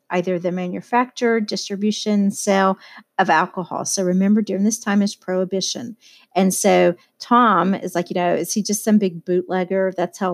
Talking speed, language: 170 wpm, English